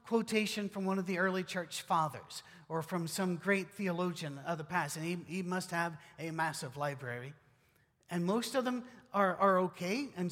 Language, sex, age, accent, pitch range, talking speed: English, male, 50-69, American, 160-210 Hz, 185 wpm